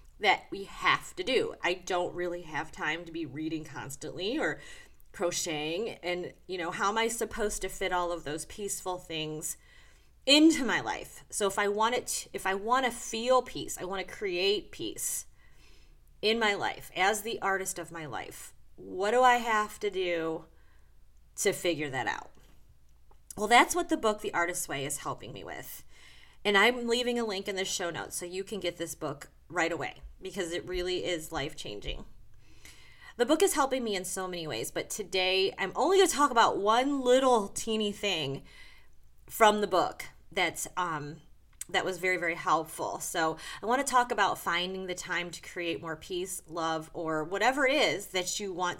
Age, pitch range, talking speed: 30-49, 160-220 Hz, 190 wpm